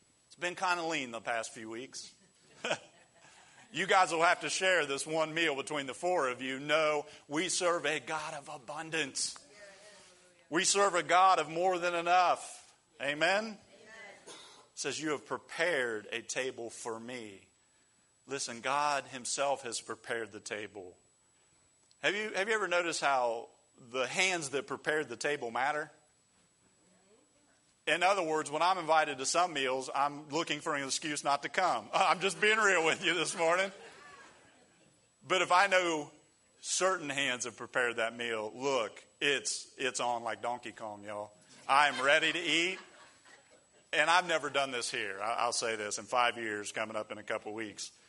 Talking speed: 165 wpm